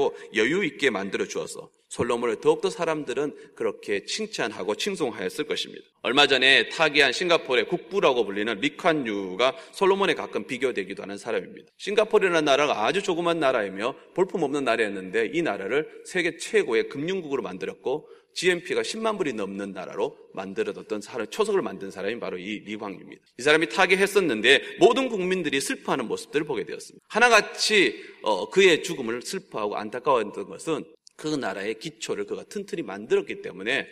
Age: 30-49